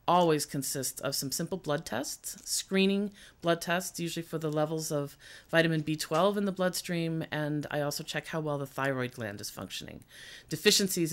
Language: English